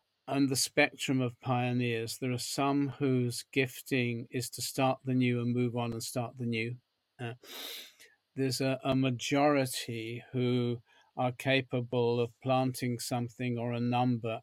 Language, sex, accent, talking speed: English, male, British, 150 wpm